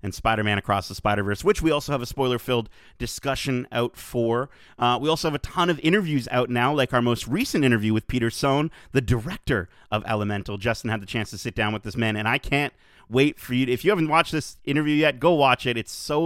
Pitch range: 110-145 Hz